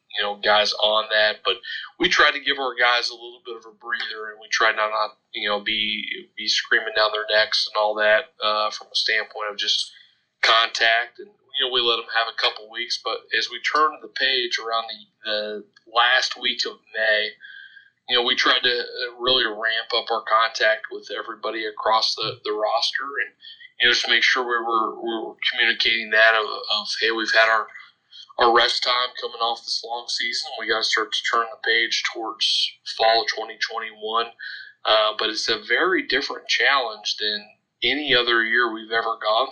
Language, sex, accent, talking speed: English, male, American, 200 wpm